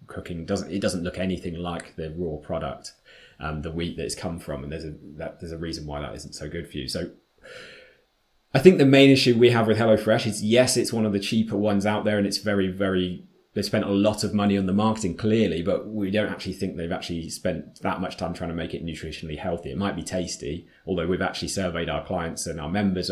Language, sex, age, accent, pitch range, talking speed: English, male, 20-39, British, 85-105 Hz, 250 wpm